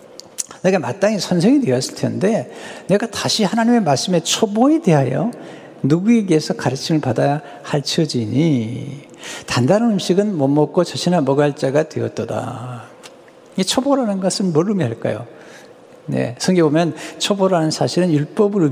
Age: 60-79